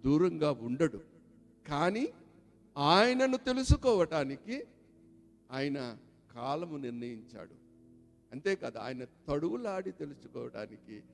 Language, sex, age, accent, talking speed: Telugu, male, 50-69, native, 70 wpm